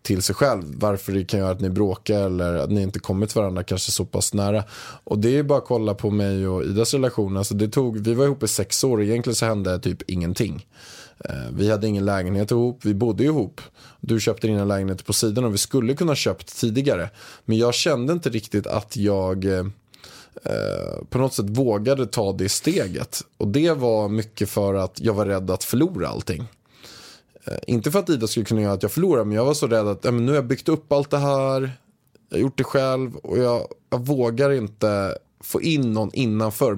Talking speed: 215 wpm